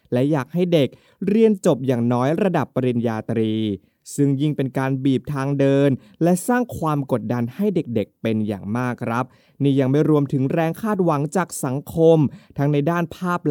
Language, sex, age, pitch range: Thai, male, 20-39, 120-165 Hz